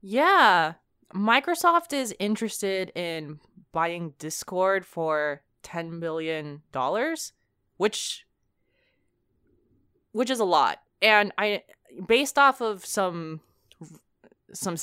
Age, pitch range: 20-39, 140-190 Hz